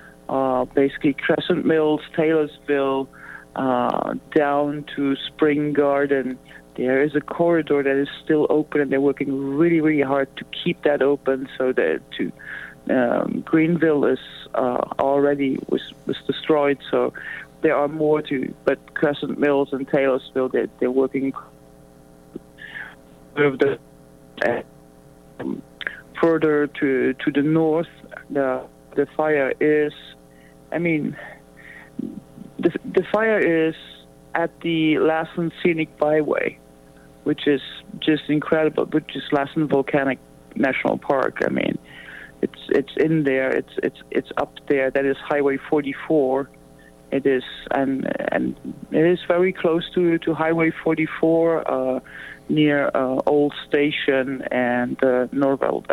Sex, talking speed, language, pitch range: male, 130 wpm, English, 130-155 Hz